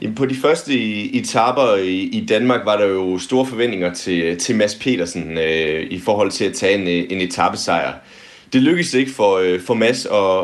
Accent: native